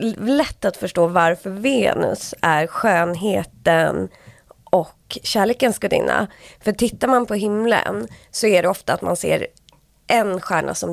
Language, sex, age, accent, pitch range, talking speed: Swedish, female, 20-39, native, 170-215 Hz, 135 wpm